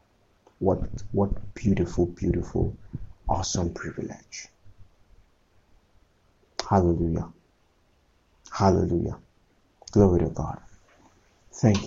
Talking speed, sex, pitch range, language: 60 wpm, male, 90-115 Hz, English